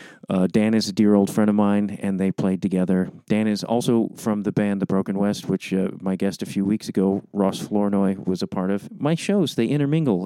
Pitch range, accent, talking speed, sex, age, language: 100-130 Hz, American, 235 wpm, male, 40-59, English